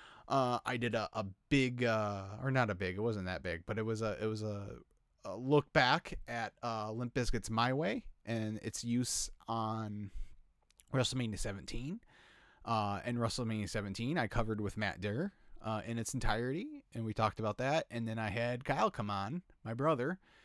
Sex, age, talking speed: male, 30-49, 190 wpm